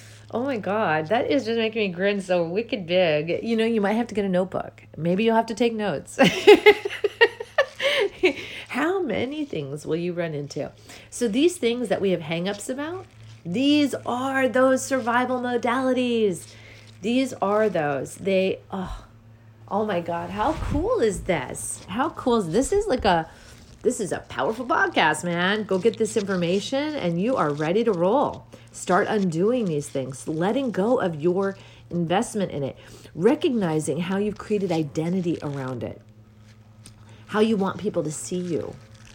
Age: 30-49